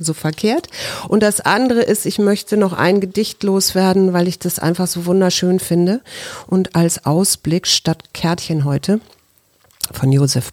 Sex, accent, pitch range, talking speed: female, German, 135-180 Hz, 155 wpm